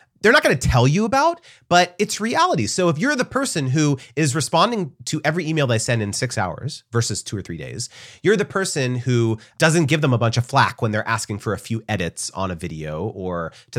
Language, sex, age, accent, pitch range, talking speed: English, male, 30-49, American, 105-150 Hz, 235 wpm